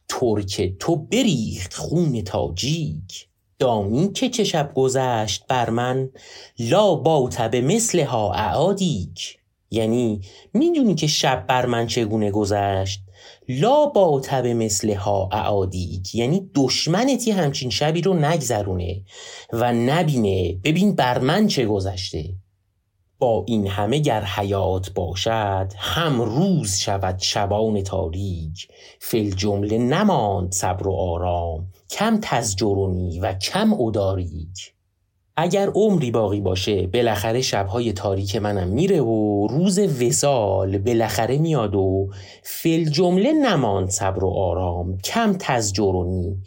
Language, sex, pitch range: Persian, male, 95-145 Hz